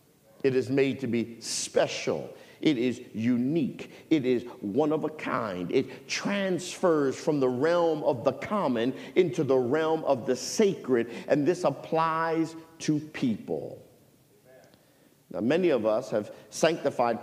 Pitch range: 130-160 Hz